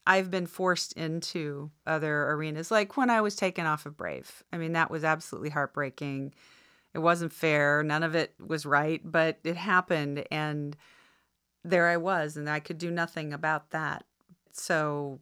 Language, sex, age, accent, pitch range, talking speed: English, female, 40-59, American, 150-175 Hz, 170 wpm